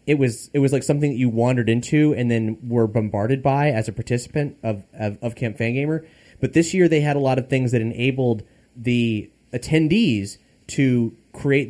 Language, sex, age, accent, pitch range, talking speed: English, male, 30-49, American, 110-135 Hz, 195 wpm